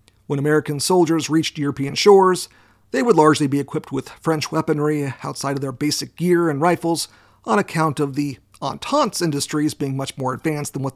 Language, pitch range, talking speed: English, 135-165 Hz, 180 wpm